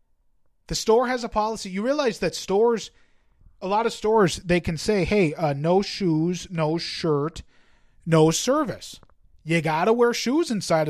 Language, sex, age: English, male, 30-49